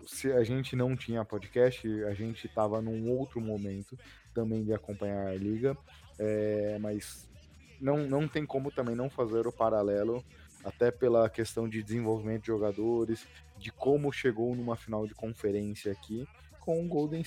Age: 20-39